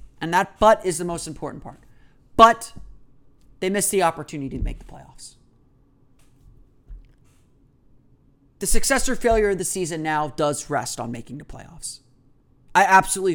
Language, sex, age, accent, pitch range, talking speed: English, male, 30-49, American, 135-195 Hz, 150 wpm